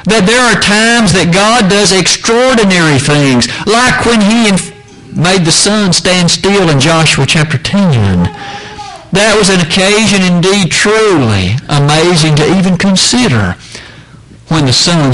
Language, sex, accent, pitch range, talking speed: English, male, American, 145-200 Hz, 135 wpm